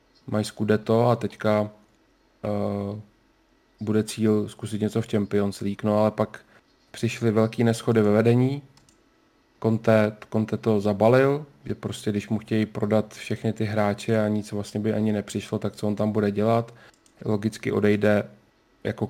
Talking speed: 150 wpm